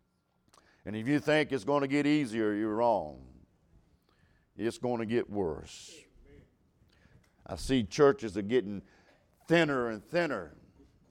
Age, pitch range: 50-69, 145-230 Hz